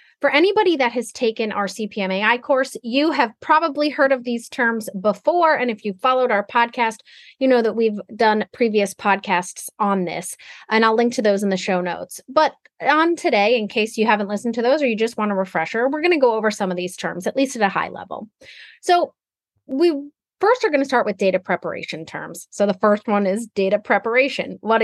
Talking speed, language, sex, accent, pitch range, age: 215 wpm, English, female, American, 195-275 Hz, 30-49